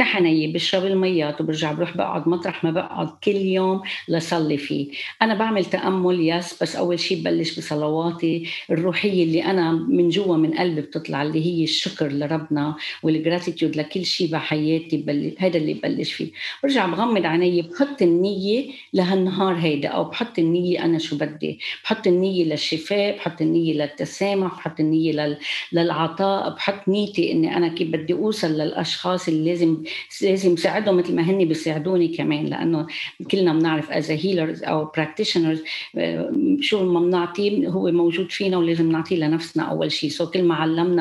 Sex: female